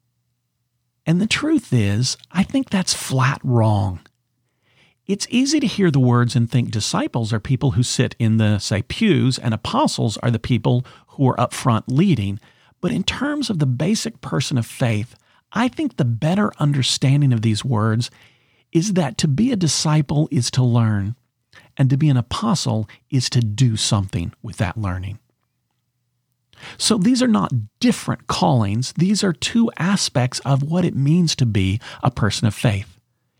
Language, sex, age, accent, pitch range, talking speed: English, male, 40-59, American, 115-155 Hz, 170 wpm